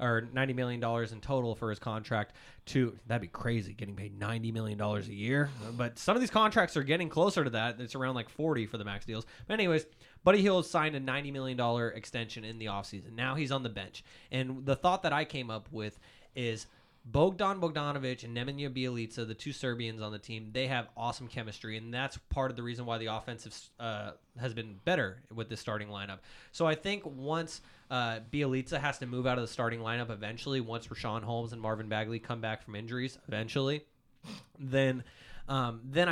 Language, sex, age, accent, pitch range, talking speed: English, male, 20-39, American, 115-140 Hz, 210 wpm